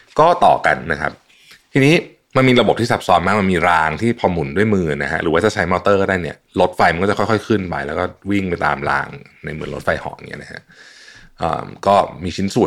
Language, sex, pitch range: Thai, male, 80-110 Hz